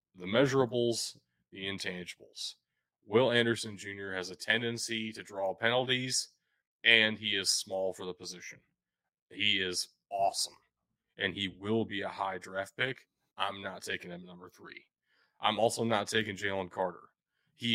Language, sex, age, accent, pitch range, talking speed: English, male, 30-49, American, 95-115 Hz, 150 wpm